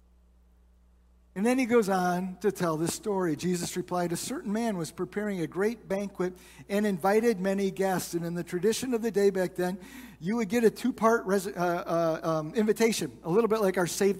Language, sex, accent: English, male, American